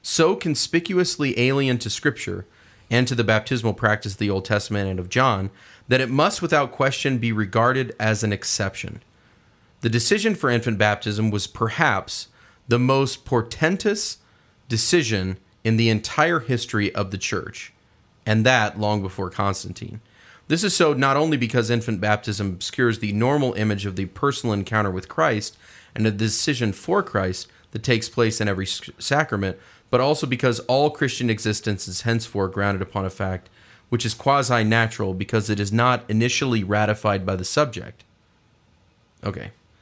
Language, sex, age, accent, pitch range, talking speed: English, male, 30-49, American, 100-125 Hz, 155 wpm